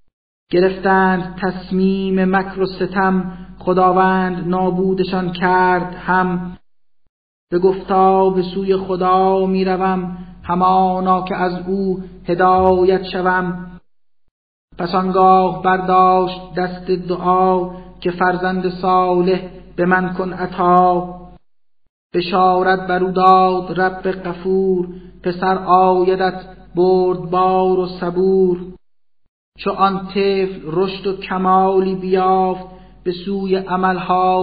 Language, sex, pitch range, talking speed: Persian, male, 180-185 Hz, 90 wpm